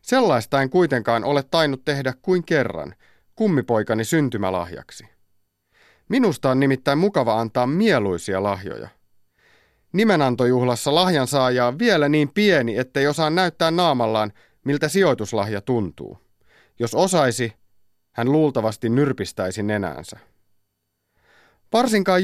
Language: Finnish